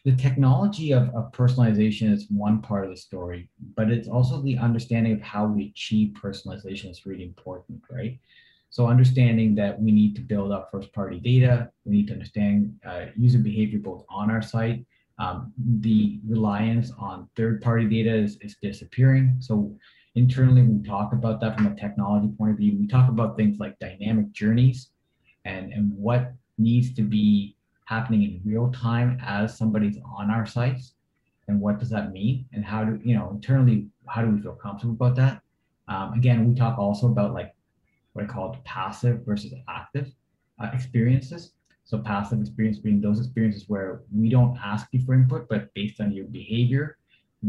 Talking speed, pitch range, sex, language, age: 180 wpm, 105-120 Hz, male, English, 30-49